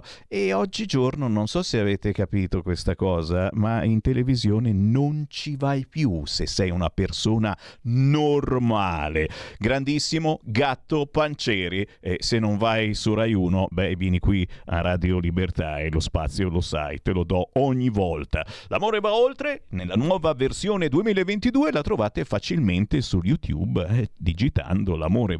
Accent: native